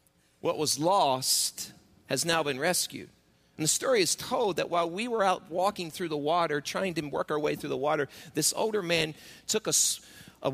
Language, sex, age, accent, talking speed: English, male, 40-59, American, 200 wpm